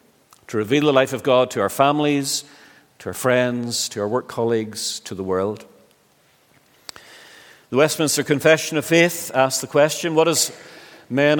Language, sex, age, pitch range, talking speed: English, male, 50-69, 115-150 Hz, 160 wpm